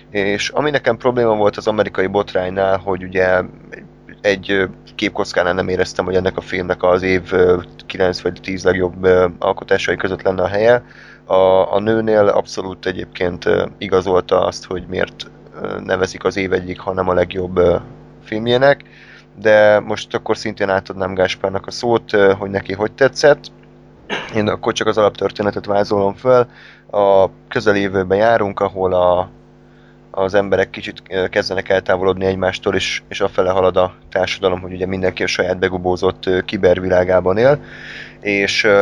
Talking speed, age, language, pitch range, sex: 140 wpm, 20-39, Hungarian, 90-100 Hz, male